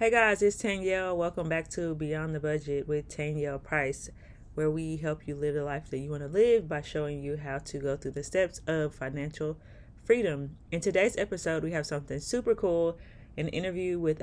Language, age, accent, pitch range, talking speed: English, 30-49, American, 145-175 Hz, 205 wpm